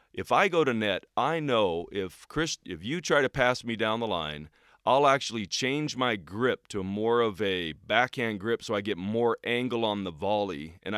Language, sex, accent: English, male, American